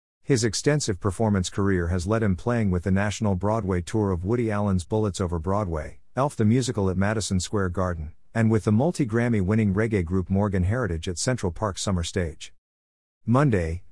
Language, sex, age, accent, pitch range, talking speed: English, male, 50-69, American, 90-110 Hz, 175 wpm